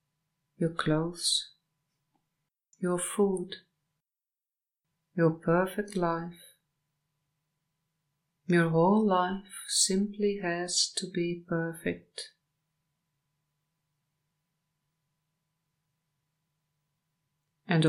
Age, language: 50-69, English